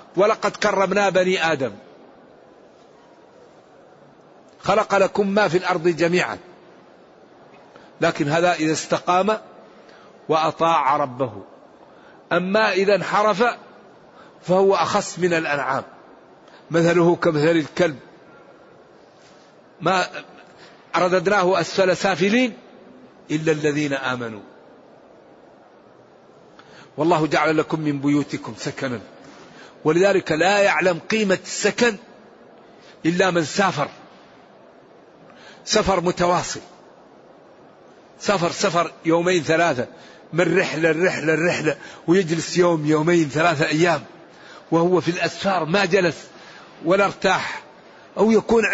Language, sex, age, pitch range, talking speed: Arabic, male, 50-69, 160-200 Hz, 85 wpm